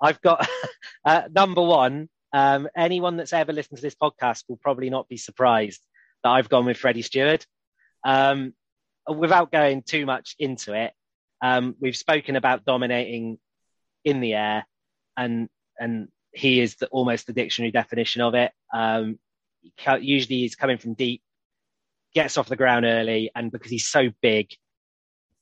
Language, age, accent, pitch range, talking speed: English, 20-39, British, 115-135 Hz, 155 wpm